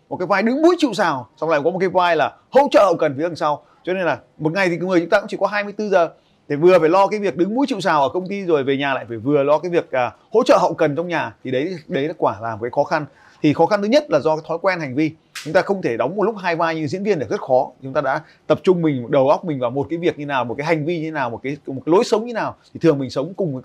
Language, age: Vietnamese, 20-39